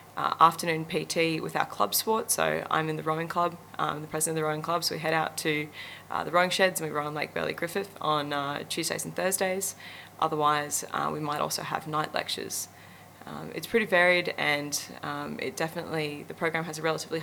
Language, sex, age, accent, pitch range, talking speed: English, female, 20-39, Australian, 150-170 Hz, 215 wpm